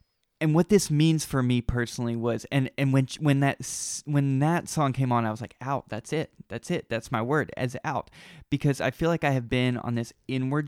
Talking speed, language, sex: 230 wpm, English, male